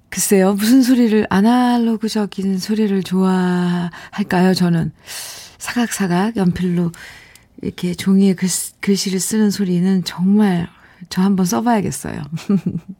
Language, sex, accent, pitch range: Korean, female, native, 170-220 Hz